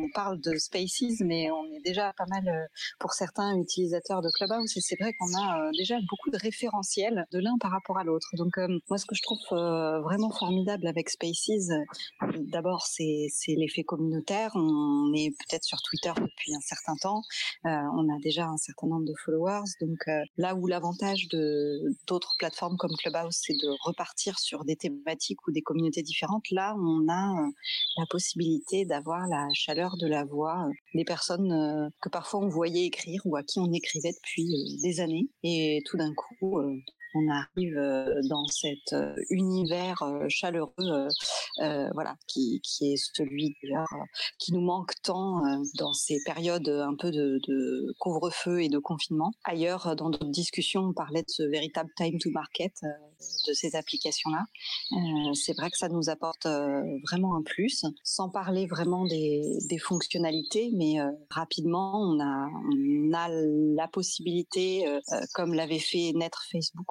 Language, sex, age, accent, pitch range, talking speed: French, female, 30-49, French, 155-185 Hz, 170 wpm